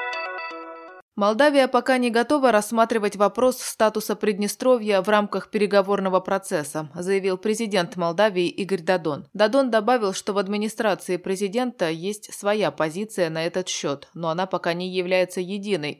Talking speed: 130 wpm